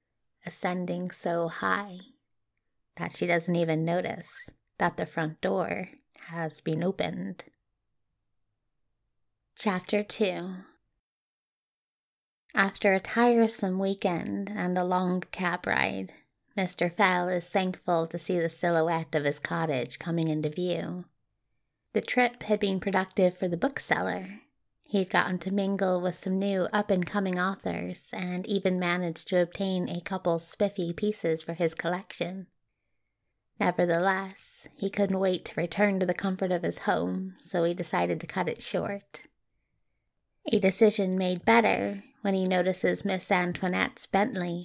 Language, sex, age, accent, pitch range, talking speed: English, female, 20-39, American, 170-195 Hz, 130 wpm